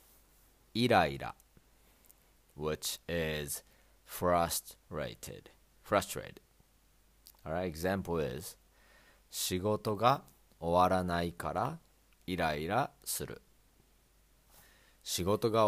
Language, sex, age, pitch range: Japanese, male, 30-49, 80-105 Hz